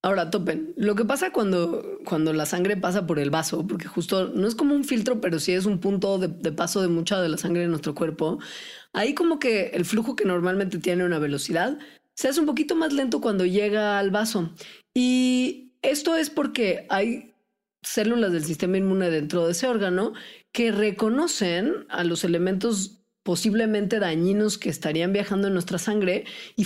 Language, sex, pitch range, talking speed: Spanish, female, 175-225 Hz, 185 wpm